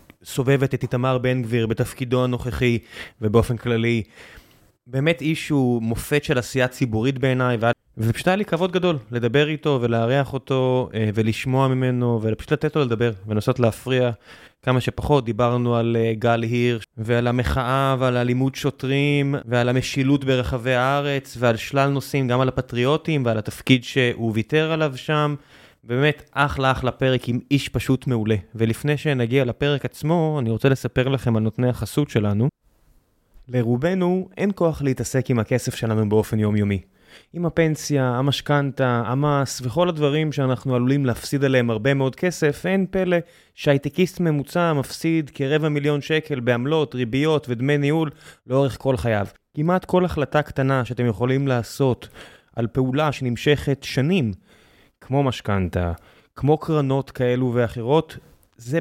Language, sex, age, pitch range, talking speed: Hebrew, male, 20-39, 120-145 Hz, 140 wpm